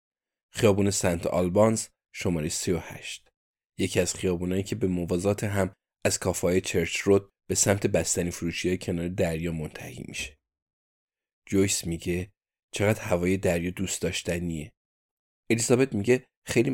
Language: Persian